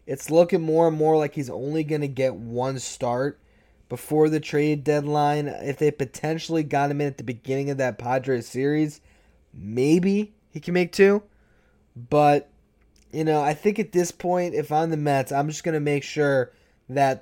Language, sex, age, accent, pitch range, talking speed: English, male, 20-39, American, 130-155 Hz, 190 wpm